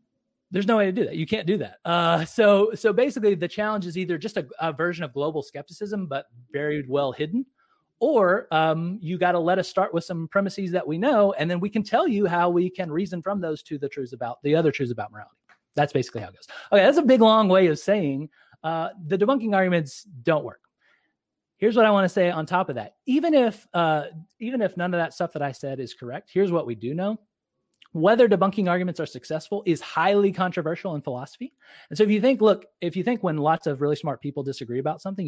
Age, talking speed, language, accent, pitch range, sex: 30-49, 235 wpm, English, American, 145-200 Hz, male